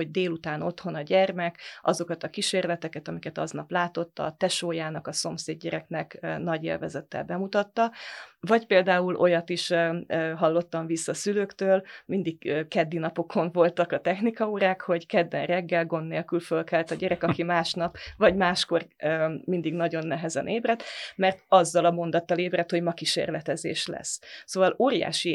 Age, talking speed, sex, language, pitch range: 30-49, 140 wpm, female, Hungarian, 165-190 Hz